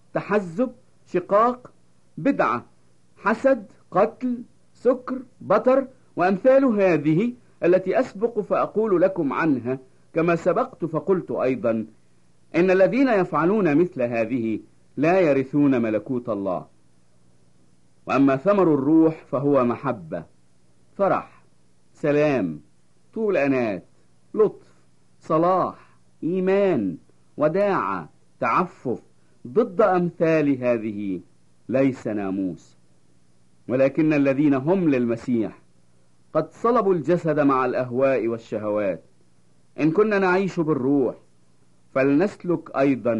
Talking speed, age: 85 wpm, 50-69